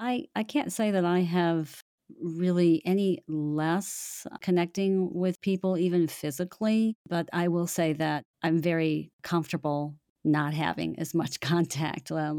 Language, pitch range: English, 150-175 Hz